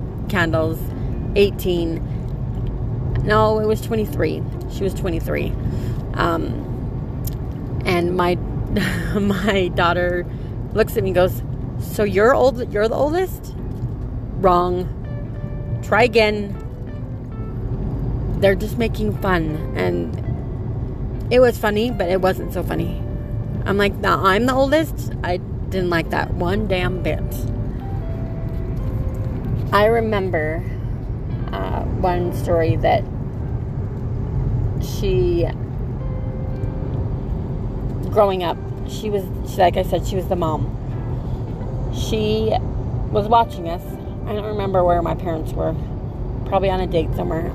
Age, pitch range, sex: 30-49, 115-160 Hz, female